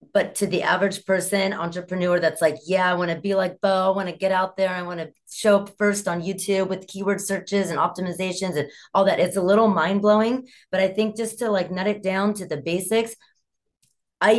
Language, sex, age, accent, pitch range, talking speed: English, female, 30-49, American, 175-210 Hz, 230 wpm